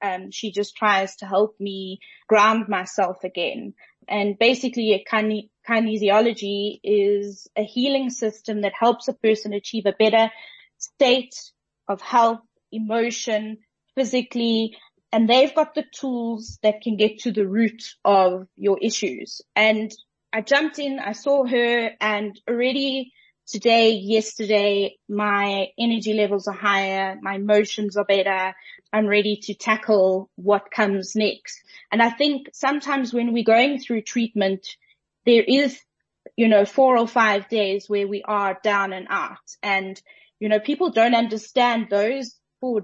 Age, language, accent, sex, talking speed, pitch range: 20-39, English, South African, female, 145 wpm, 200-235 Hz